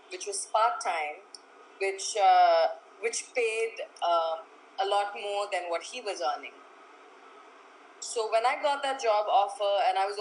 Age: 20-39